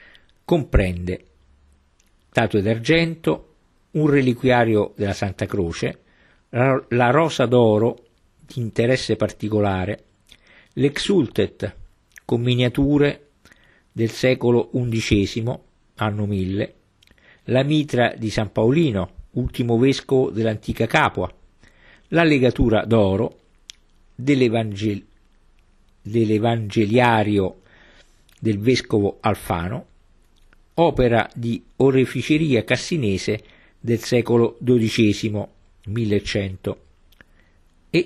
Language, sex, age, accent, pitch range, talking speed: Italian, male, 50-69, native, 100-130 Hz, 75 wpm